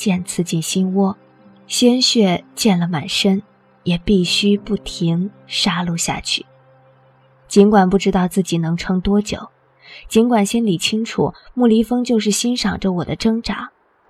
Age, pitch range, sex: 20-39, 185-220 Hz, female